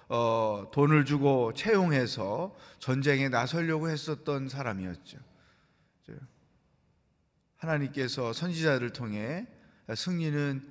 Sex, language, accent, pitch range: male, Korean, native, 120-165 Hz